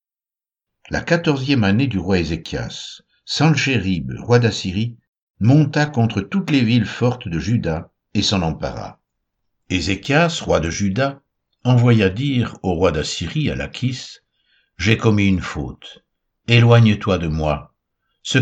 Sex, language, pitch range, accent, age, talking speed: male, French, 85-125 Hz, French, 60-79, 130 wpm